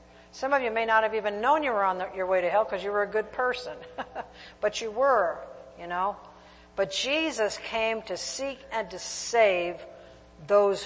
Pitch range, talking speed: 175-225 Hz, 195 wpm